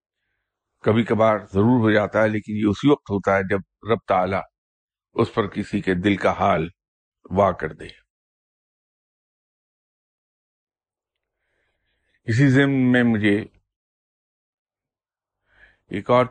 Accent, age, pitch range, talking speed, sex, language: Indian, 50-69, 95-120 Hz, 100 wpm, male, English